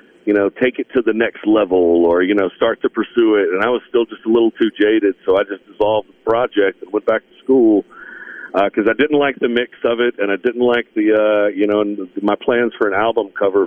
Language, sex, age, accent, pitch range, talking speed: English, male, 50-69, American, 105-145 Hz, 260 wpm